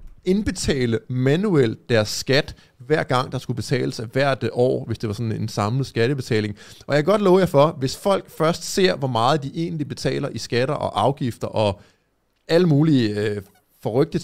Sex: male